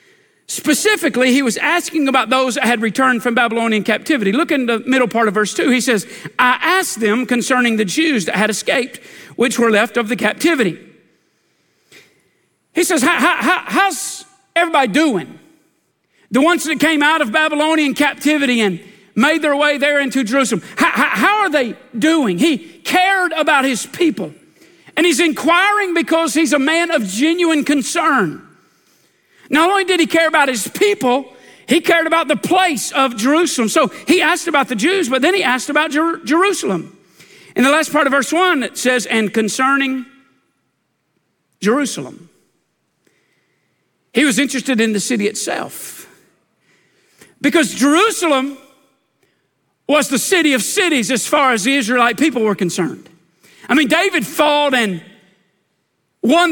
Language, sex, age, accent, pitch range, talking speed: English, male, 50-69, American, 245-330 Hz, 155 wpm